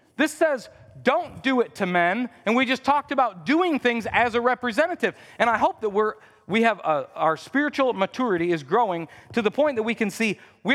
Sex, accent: male, American